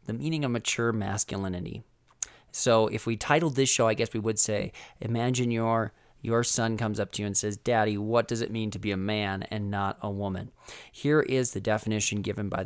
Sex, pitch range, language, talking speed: male, 110-130 Hz, English, 210 wpm